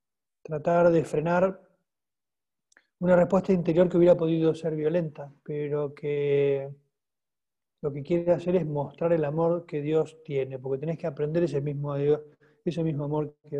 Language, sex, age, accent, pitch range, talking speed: Spanish, male, 40-59, Argentinian, 145-175 Hz, 140 wpm